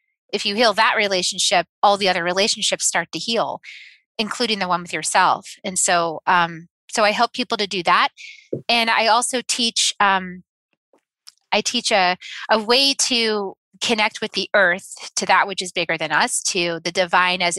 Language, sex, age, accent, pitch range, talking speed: English, female, 30-49, American, 180-225 Hz, 180 wpm